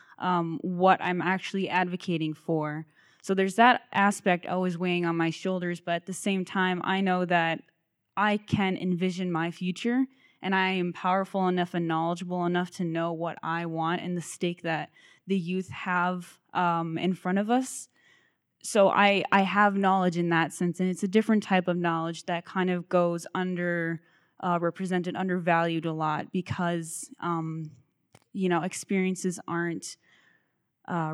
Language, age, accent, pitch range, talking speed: English, 10-29, American, 170-185 Hz, 165 wpm